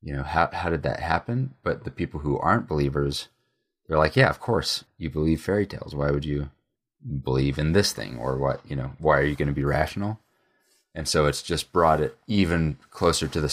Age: 30-49